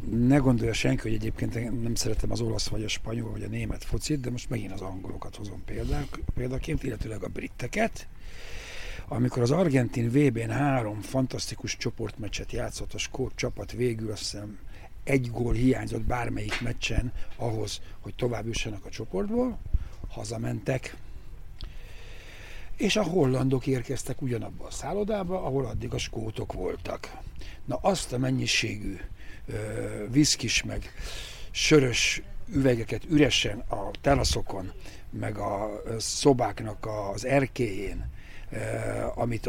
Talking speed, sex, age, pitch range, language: 125 wpm, male, 60-79, 105-130 Hz, Hungarian